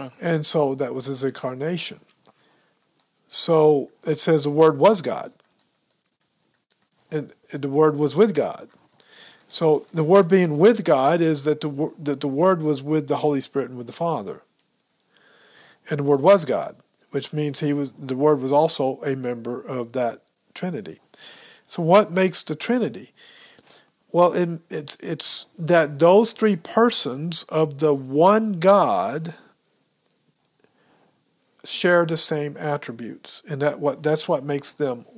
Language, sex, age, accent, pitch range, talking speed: English, male, 50-69, American, 140-170 Hz, 145 wpm